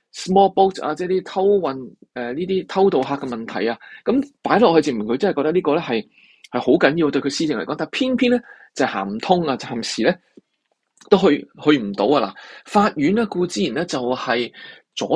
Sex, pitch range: male, 130-200 Hz